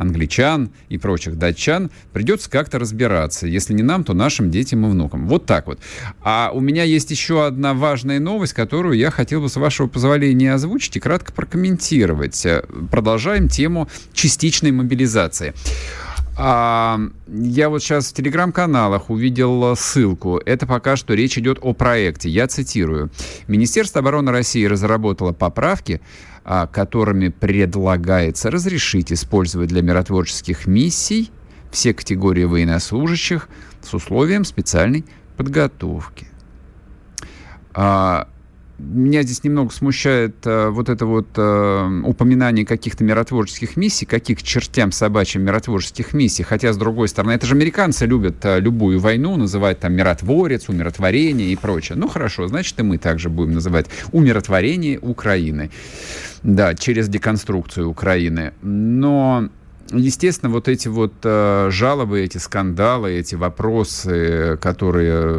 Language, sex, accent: Russian, male, native